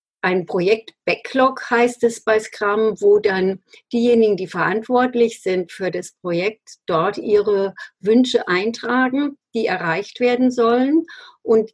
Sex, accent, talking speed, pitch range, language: female, German, 125 wpm, 185-245 Hz, German